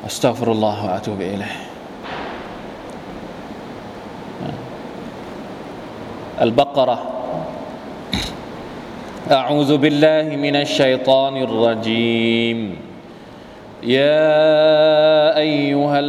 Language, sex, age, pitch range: Thai, male, 30-49, 130-150 Hz